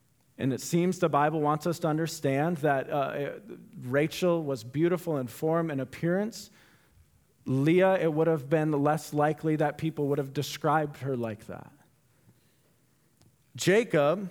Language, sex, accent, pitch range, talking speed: English, male, American, 150-200 Hz, 145 wpm